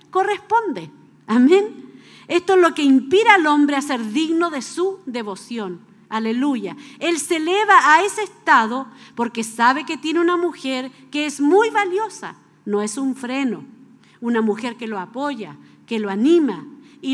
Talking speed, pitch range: 160 wpm, 230-345 Hz